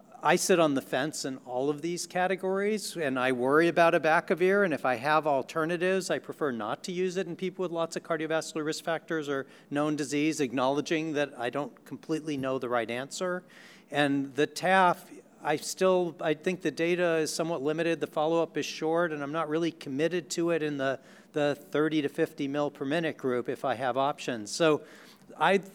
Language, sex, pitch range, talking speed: English, male, 130-165 Hz, 200 wpm